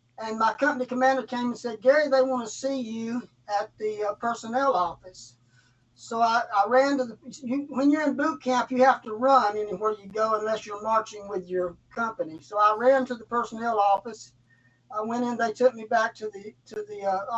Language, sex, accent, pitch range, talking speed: English, male, American, 195-250 Hz, 205 wpm